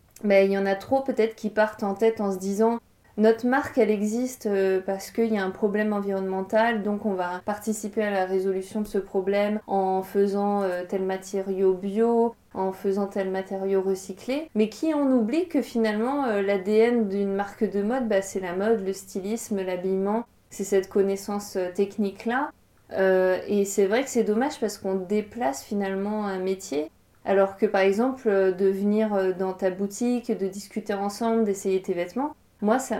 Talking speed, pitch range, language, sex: 180 wpm, 190-220 Hz, French, female